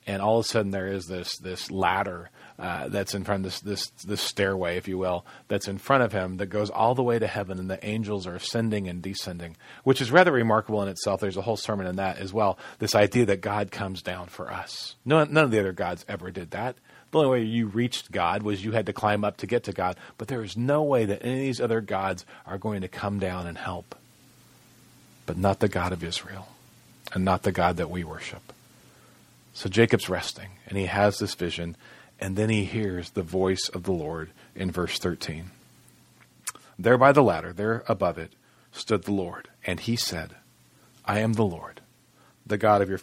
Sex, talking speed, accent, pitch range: male, 220 wpm, American, 95-115 Hz